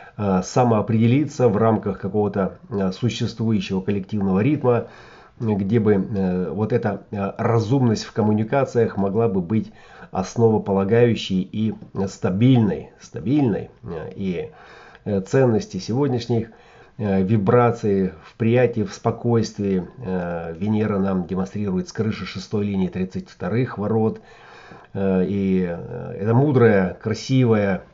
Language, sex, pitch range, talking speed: Russian, male, 95-115 Hz, 90 wpm